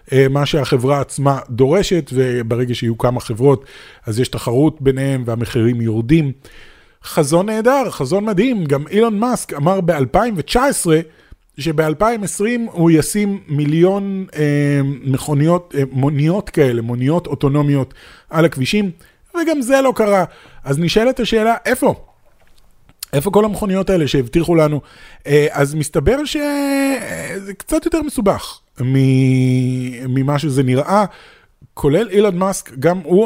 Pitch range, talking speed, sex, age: 135-195 Hz, 115 wpm, male, 30-49